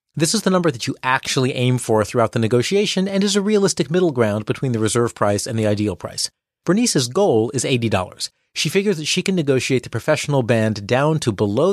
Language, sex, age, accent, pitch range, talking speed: English, male, 40-59, American, 110-155 Hz, 215 wpm